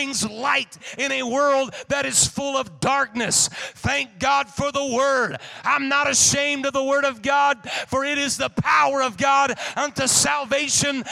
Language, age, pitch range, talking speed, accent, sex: English, 40-59, 235-275 Hz, 165 wpm, American, male